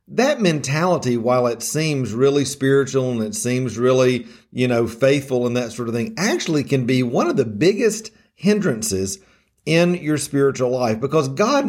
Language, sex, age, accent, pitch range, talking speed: English, male, 50-69, American, 125-175 Hz, 170 wpm